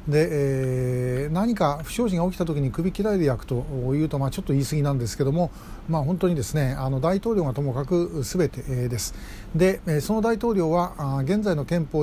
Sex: male